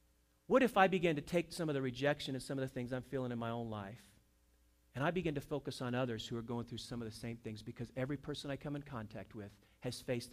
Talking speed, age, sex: 275 wpm, 40-59, male